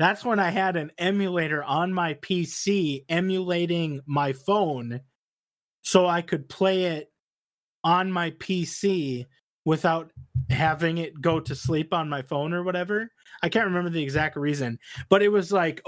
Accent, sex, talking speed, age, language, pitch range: American, male, 155 wpm, 20-39, English, 155-195 Hz